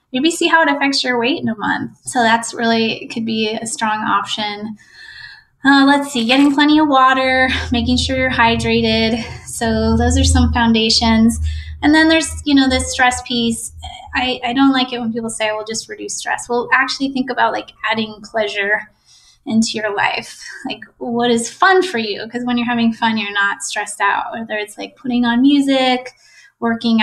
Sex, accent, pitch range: female, American, 220-265 Hz